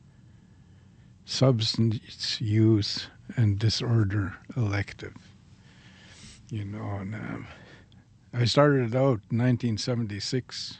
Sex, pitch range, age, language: male, 105-125 Hz, 60-79, English